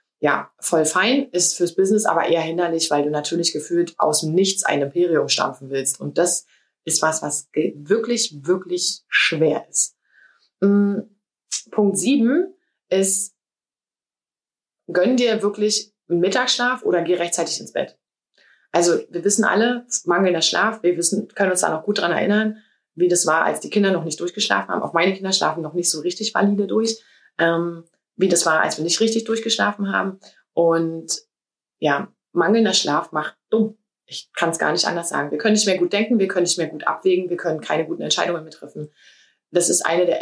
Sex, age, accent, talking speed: female, 20-39, German, 180 wpm